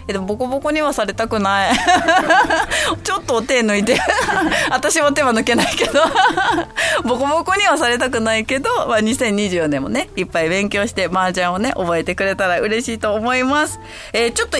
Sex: female